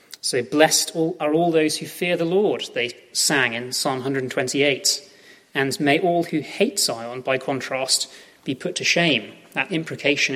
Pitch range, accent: 130-170 Hz, British